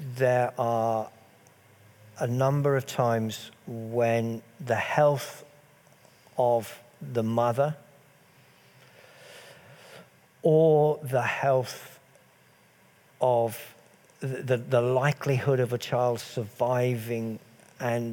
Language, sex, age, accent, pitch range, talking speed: English, male, 50-69, British, 115-135 Hz, 80 wpm